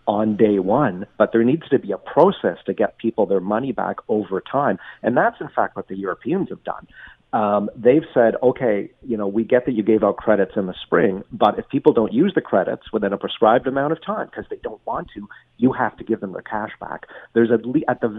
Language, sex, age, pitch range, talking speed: English, male, 40-59, 100-120 Hz, 245 wpm